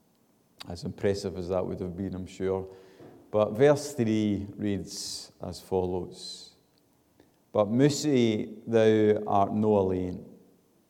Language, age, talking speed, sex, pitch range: English, 40-59, 115 wpm, male, 90-110 Hz